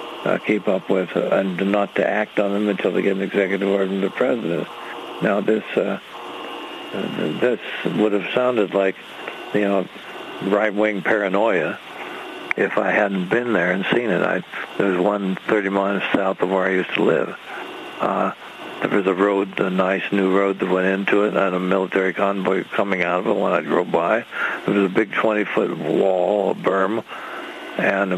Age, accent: 60-79, American